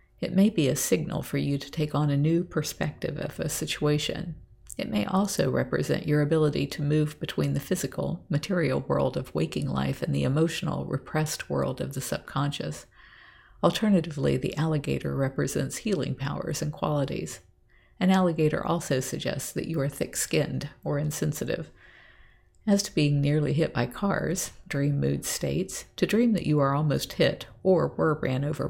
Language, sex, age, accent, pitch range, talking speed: English, female, 50-69, American, 140-170 Hz, 165 wpm